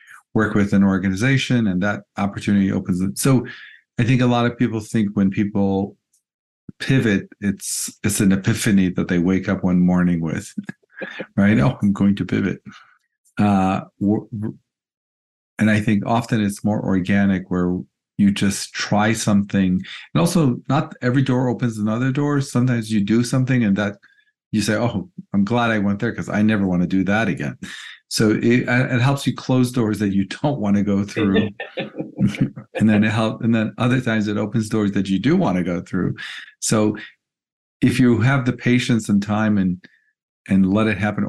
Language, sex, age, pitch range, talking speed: English, male, 50-69, 95-115 Hz, 180 wpm